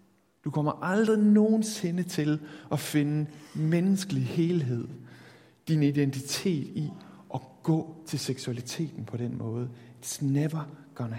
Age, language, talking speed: 60-79, Danish, 120 wpm